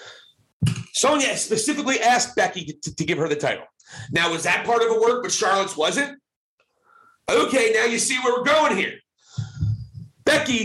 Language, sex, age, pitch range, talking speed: English, male, 40-59, 165-255 Hz, 165 wpm